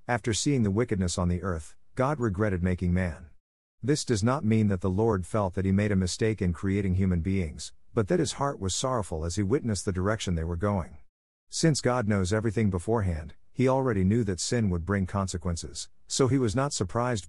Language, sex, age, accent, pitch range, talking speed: English, male, 50-69, American, 90-115 Hz, 210 wpm